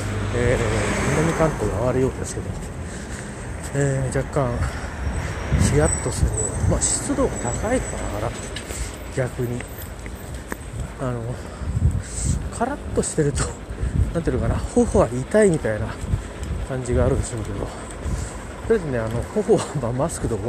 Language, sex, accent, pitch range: Japanese, male, native, 95-140 Hz